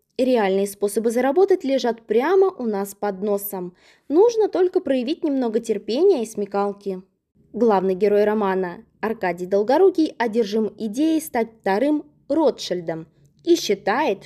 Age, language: 20-39, Russian